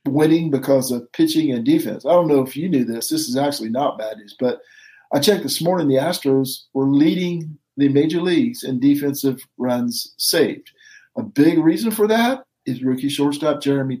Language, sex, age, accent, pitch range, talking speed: English, male, 50-69, American, 130-160 Hz, 190 wpm